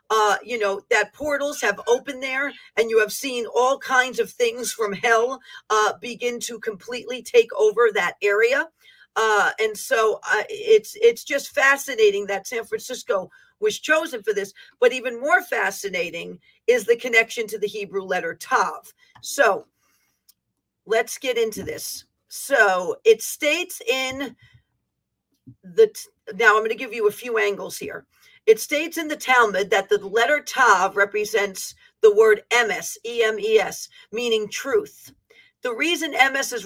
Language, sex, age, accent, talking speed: English, female, 50-69, American, 150 wpm